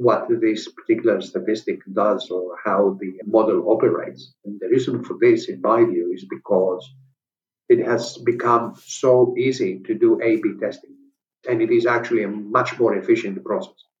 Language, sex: English, male